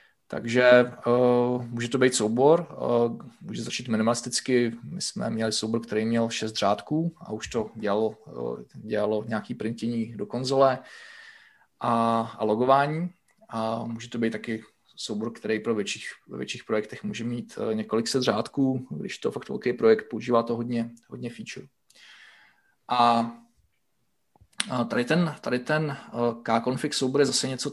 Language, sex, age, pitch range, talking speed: Czech, male, 20-39, 115-135 Hz, 150 wpm